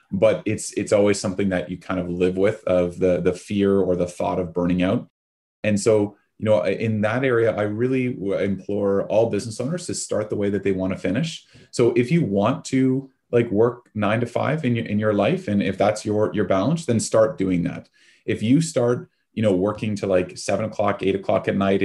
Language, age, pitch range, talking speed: English, 30-49, 95-120 Hz, 225 wpm